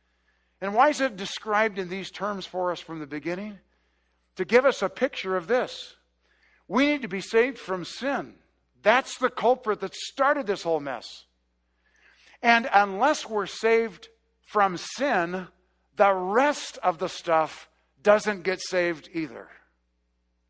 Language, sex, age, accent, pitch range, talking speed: English, male, 50-69, American, 160-225 Hz, 145 wpm